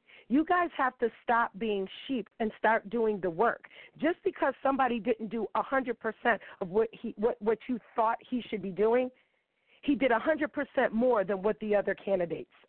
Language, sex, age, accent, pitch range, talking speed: English, female, 40-59, American, 210-260 Hz, 180 wpm